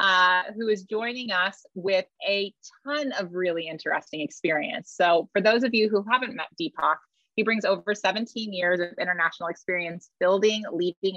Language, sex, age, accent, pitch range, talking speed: English, female, 30-49, American, 165-205 Hz, 165 wpm